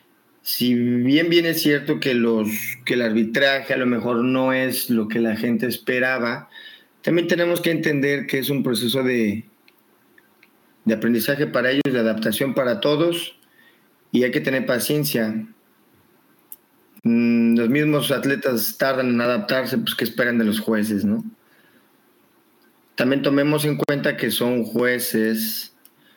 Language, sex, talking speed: Spanish, male, 140 wpm